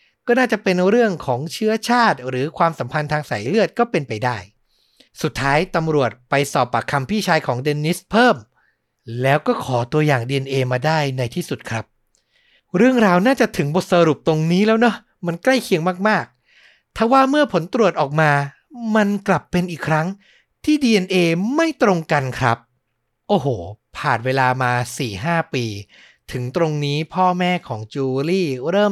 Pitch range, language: 130-190 Hz, Thai